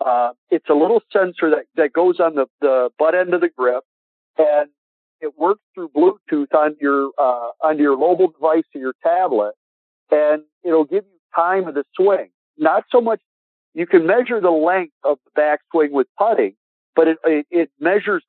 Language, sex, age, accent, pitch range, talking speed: English, male, 50-69, American, 145-190 Hz, 190 wpm